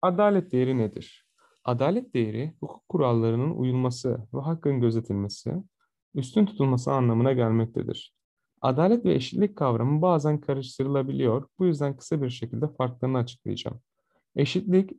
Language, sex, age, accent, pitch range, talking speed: Turkish, male, 30-49, native, 125-165 Hz, 115 wpm